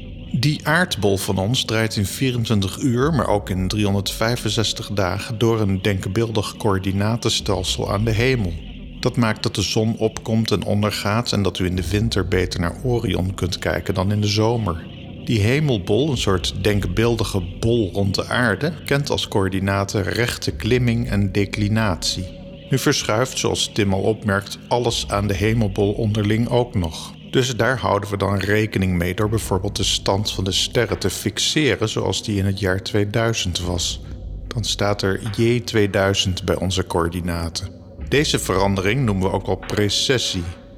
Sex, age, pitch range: male, 50-69, 95-115 Hz